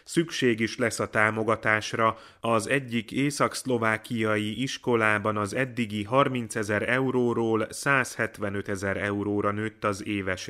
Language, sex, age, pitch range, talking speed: Hungarian, male, 30-49, 105-125 Hz, 115 wpm